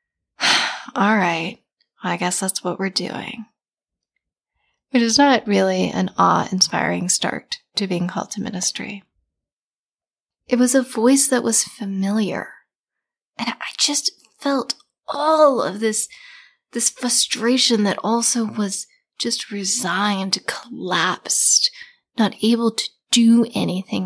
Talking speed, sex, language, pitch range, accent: 115 wpm, female, English, 190-245 Hz, American